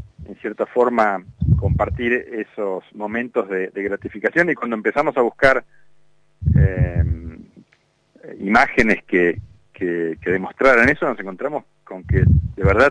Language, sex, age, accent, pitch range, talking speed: Spanish, male, 40-59, Argentinian, 95-115 Hz, 125 wpm